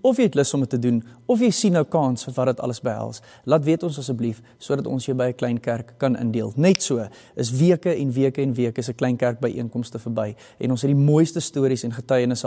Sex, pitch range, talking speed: male, 125-165 Hz, 255 wpm